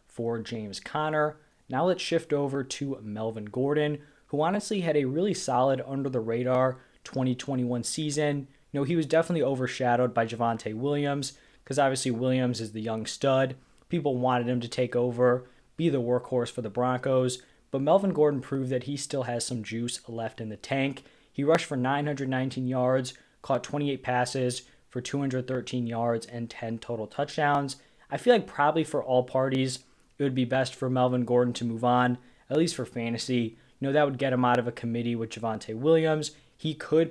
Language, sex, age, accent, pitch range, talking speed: English, male, 20-39, American, 120-145 Hz, 185 wpm